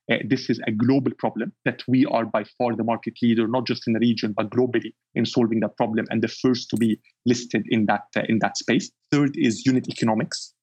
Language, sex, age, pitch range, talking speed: English, male, 30-49, 110-125 Hz, 230 wpm